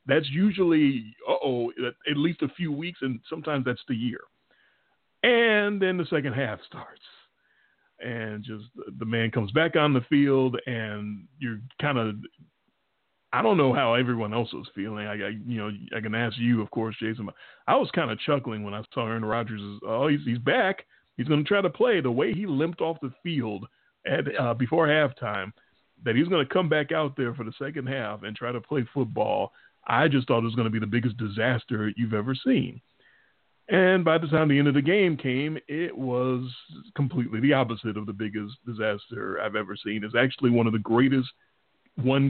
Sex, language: male, English